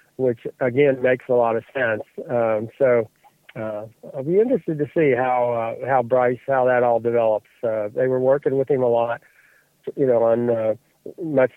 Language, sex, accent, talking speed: English, male, American, 185 wpm